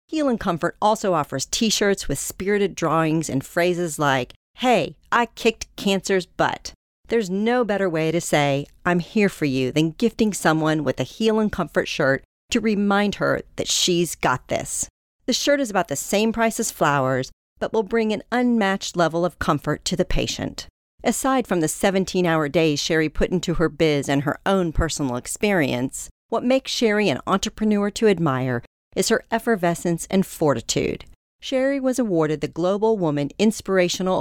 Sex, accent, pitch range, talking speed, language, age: female, American, 155-210 Hz, 170 wpm, English, 50-69